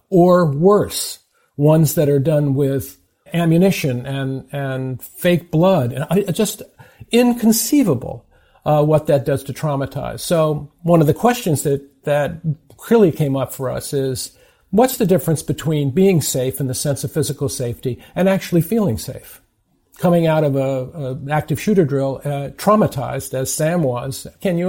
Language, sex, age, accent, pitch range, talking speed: English, male, 50-69, American, 135-185 Hz, 160 wpm